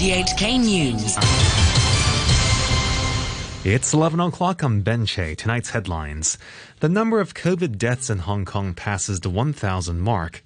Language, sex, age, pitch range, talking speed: English, male, 20-39, 95-145 Hz, 120 wpm